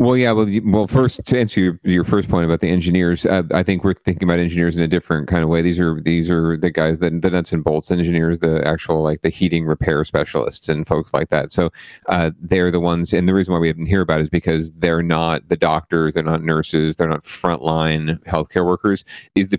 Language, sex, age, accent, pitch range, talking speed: English, male, 40-59, American, 80-90 Hz, 250 wpm